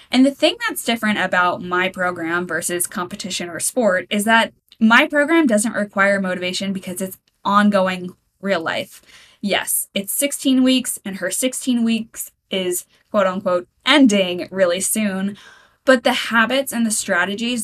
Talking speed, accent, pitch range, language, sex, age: 150 wpm, American, 185-245 Hz, English, female, 10-29